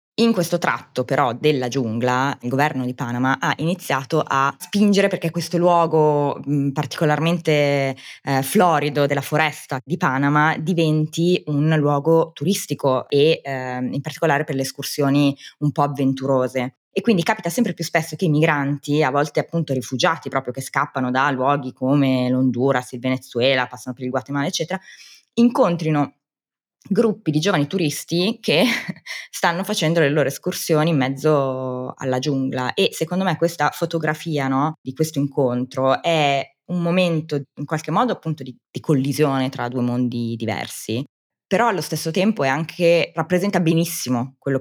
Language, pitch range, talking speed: Italian, 130-165 Hz, 150 wpm